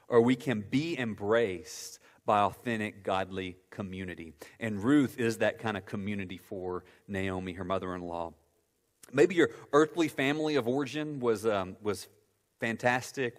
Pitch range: 95-125 Hz